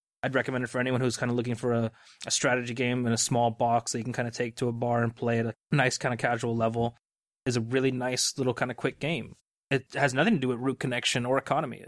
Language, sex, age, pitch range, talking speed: Swedish, male, 20-39, 120-135 Hz, 280 wpm